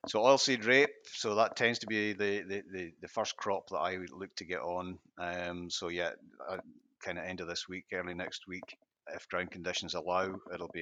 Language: English